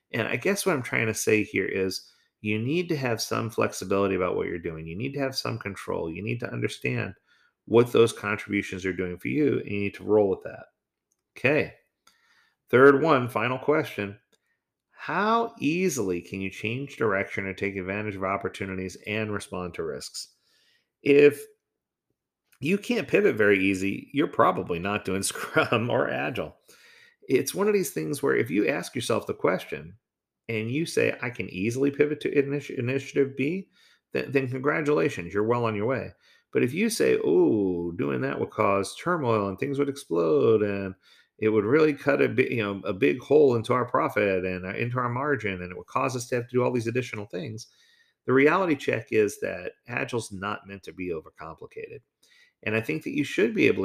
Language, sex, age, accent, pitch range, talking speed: English, male, 40-59, American, 100-150 Hz, 195 wpm